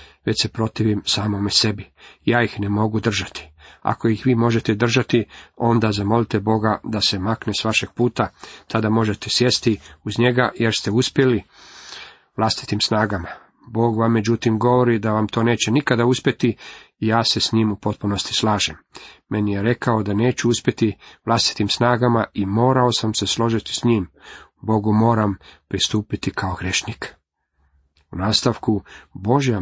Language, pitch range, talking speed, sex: Croatian, 105-125 Hz, 150 wpm, male